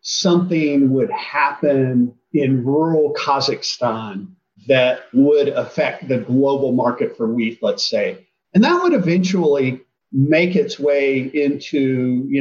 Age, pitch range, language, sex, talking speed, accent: 50-69, 125-170 Hz, English, male, 120 wpm, American